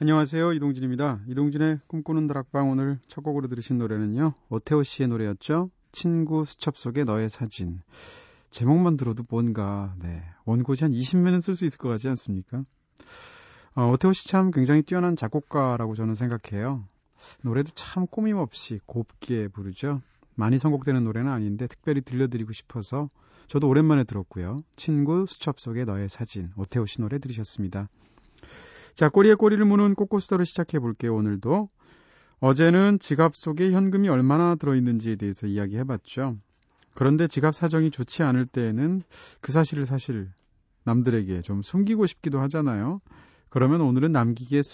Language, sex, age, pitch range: Korean, male, 30-49, 115-160 Hz